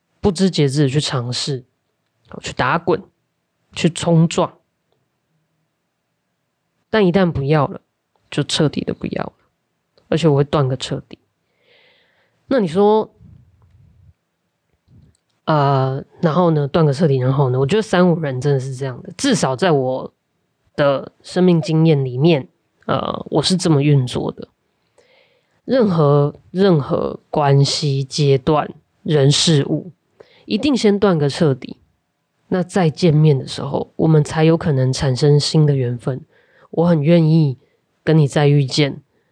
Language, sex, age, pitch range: Chinese, female, 20-39, 140-170 Hz